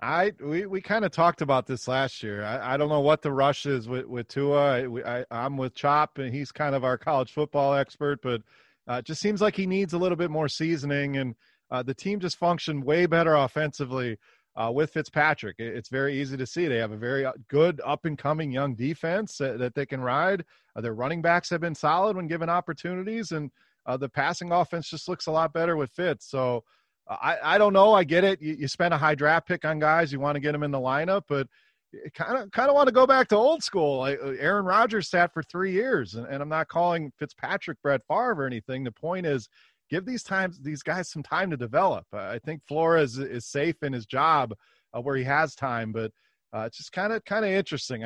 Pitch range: 135-170 Hz